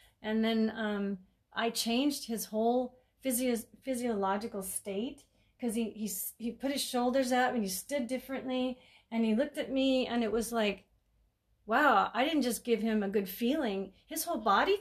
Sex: female